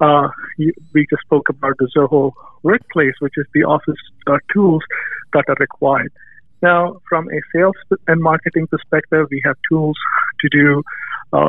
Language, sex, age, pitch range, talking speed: English, male, 50-69, 145-160 Hz, 155 wpm